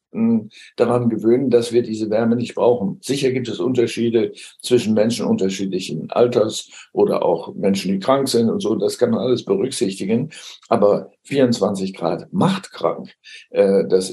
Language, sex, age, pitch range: German, male, 60-79, 115-140 Hz